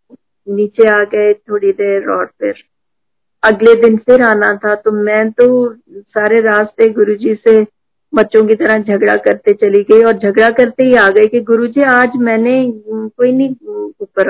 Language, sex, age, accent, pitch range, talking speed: Hindi, female, 50-69, native, 220-275 Hz, 165 wpm